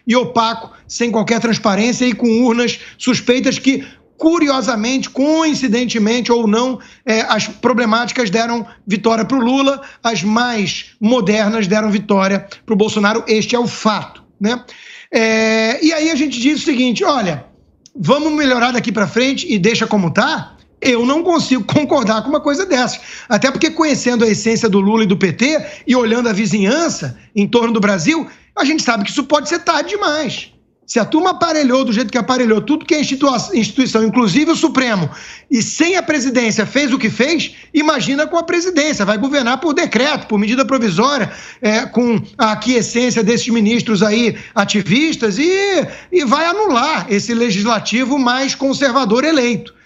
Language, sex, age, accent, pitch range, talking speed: Portuguese, male, 50-69, Brazilian, 220-280 Hz, 165 wpm